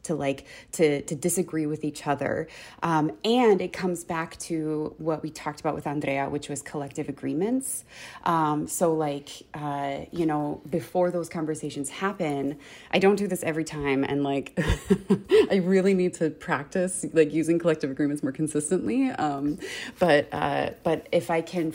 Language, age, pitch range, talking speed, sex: English, 20-39, 150-185 Hz, 165 wpm, female